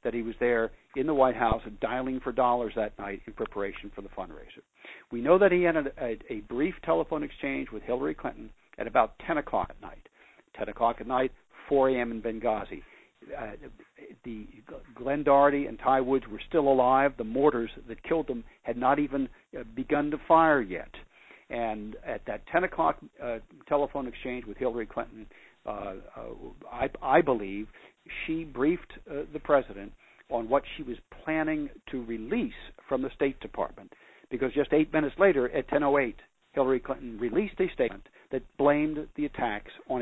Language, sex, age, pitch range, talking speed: English, male, 60-79, 110-145 Hz, 175 wpm